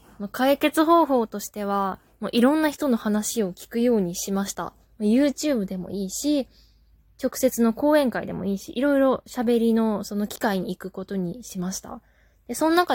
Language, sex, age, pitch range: Japanese, female, 20-39, 200-270 Hz